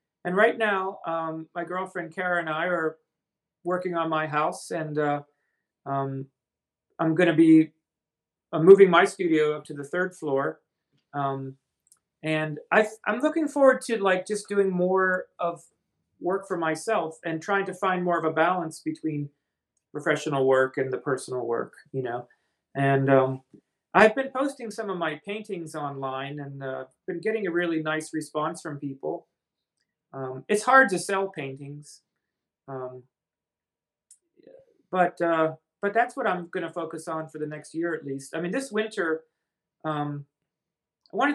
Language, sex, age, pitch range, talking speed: English, male, 40-59, 140-180 Hz, 160 wpm